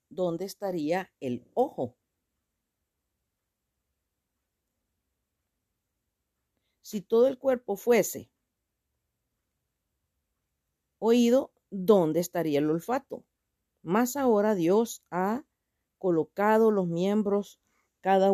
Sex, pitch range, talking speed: female, 155-215 Hz, 70 wpm